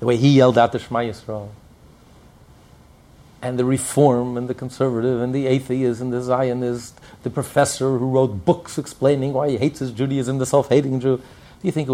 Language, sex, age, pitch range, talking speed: English, male, 50-69, 105-135 Hz, 190 wpm